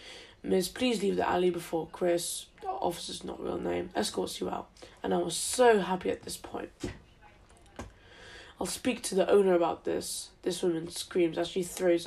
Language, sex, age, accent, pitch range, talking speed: English, female, 10-29, British, 175-200 Hz, 175 wpm